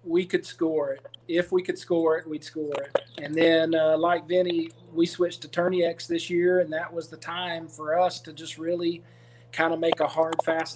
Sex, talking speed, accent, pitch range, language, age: male, 225 wpm, American, 160-180 Hz, English, 40-59